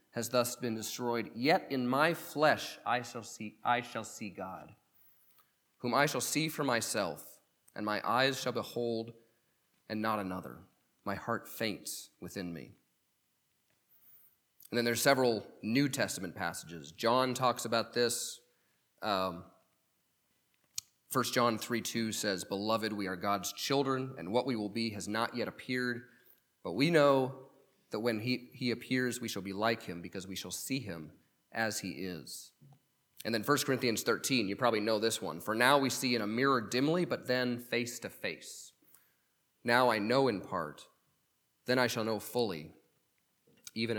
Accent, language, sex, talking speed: American, English, male, 160 wpm